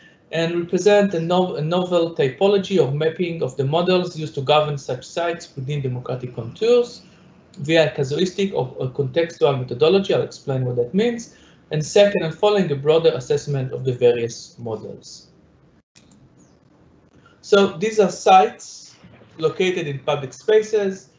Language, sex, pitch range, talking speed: English, male, 140-180 Hz, 140 wpm